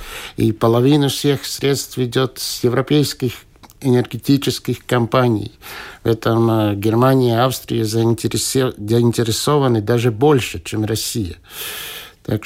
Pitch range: 115-130 Hz